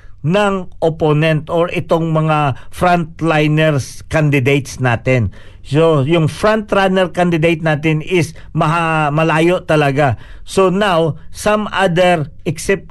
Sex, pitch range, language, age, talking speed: male, 140-180 Hz, Filipino, 50-69, 100 wpm